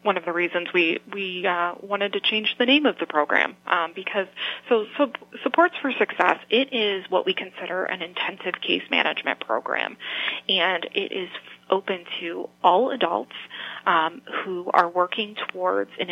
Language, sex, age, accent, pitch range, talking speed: English, female, 30-49, American, 175-210 Hz, 170 wpm